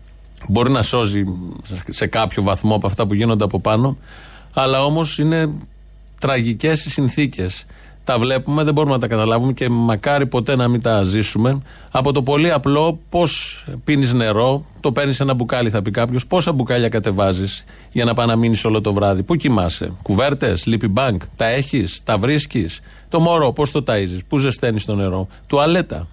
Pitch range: 110-145 Hz